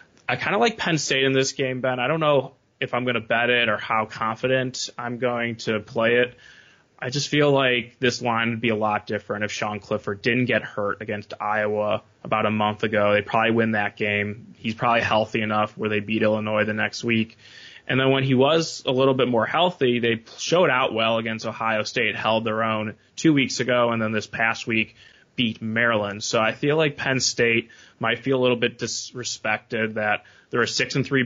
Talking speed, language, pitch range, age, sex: 220 wpm, English, 110-125 Hz, 20-39, male